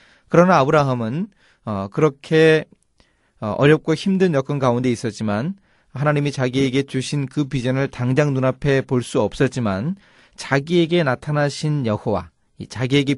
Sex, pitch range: male, 115-155 Hz